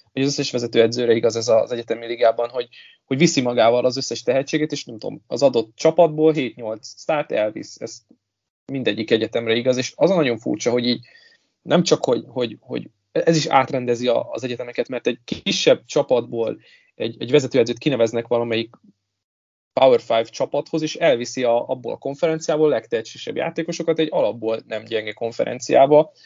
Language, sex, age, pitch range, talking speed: Hungarian, male, 20-39, 115-150 Hz, 160 wpm